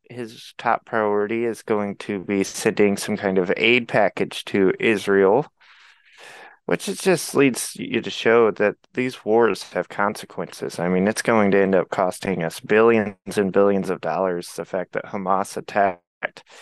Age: 20-39